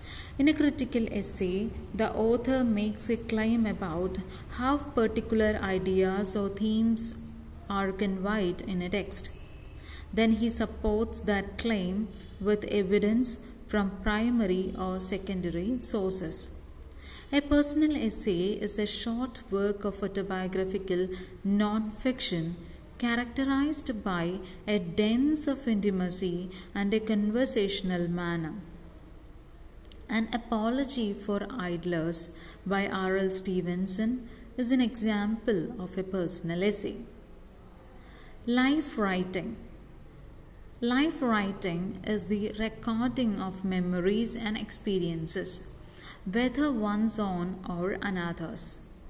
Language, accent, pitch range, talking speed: English, Indian, 185-230 Hz, 100 wpm